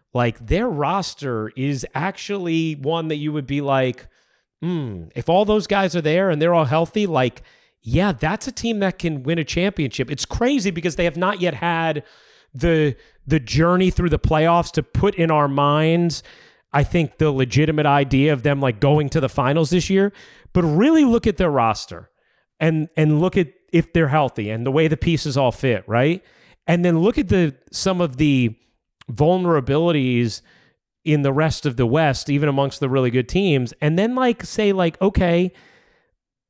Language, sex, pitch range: English, male, 140-180 Hz